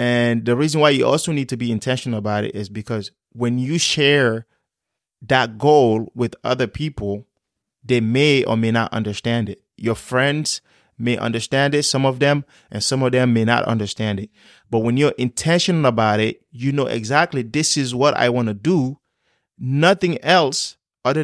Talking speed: 180 wpm